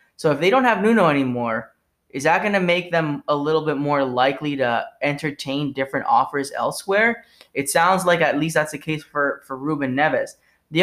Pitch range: 135-165 Hz